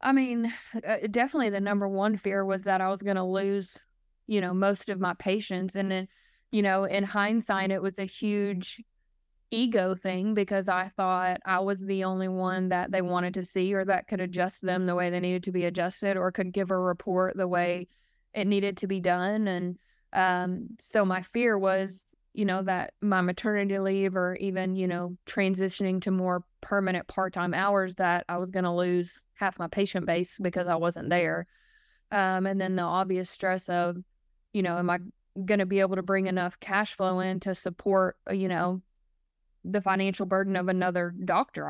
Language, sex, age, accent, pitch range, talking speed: English, female, 20-39, American, 185-200 Hz, 195 wpm